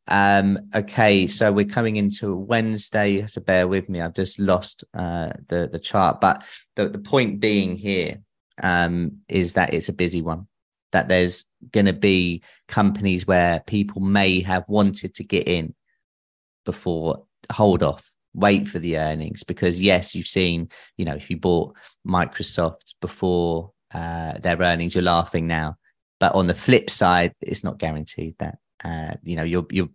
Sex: male